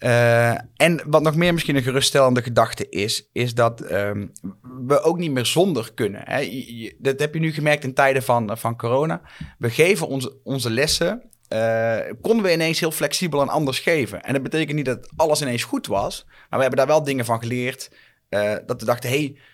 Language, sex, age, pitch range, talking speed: English, male, 30-49, 115-145 Hz, 210 wpm